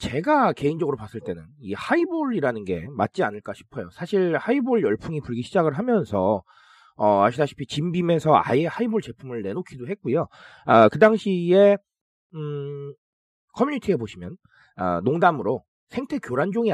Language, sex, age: Korean, male, 30-49